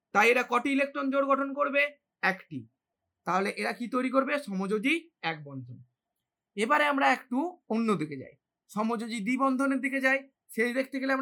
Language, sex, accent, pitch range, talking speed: Hindi, male, native, 205-275 Hz, 55 wpm